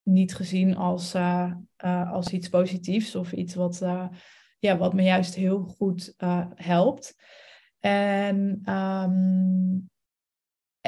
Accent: Dutch